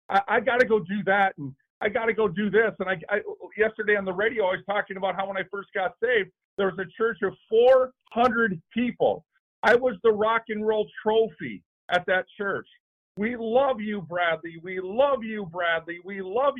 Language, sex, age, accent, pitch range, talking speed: English, male, 50-69, American, 195-245 Hz, 200 wpm